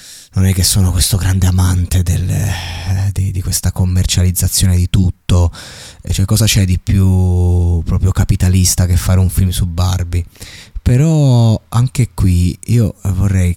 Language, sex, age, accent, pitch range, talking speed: Italian, male, 20-39, native, 90-105 Hz, 140 wpm